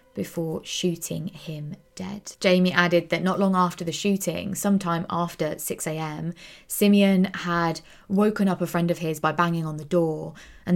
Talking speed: 160 wpm